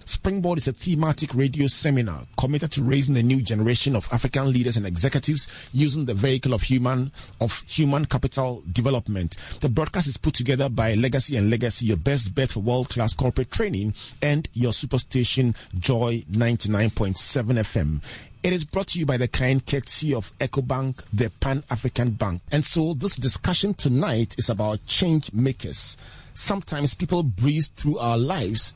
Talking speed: 160 wpm